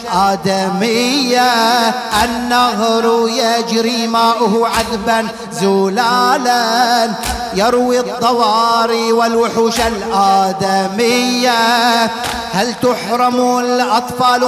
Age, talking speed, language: 30-49, 55 wpm, Arabic